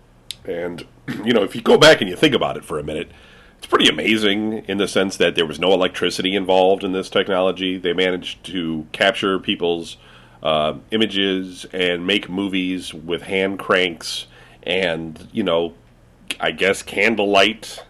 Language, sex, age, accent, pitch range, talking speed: English, male, 40-59, American, 85-100 Hz, 165 wpm